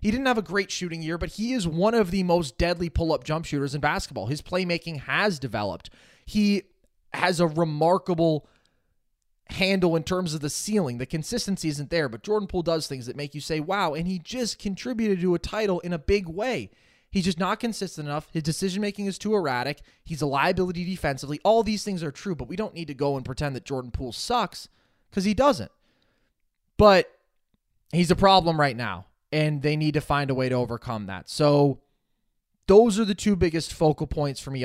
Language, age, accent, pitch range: English, 20-39, American, 145-195 Hz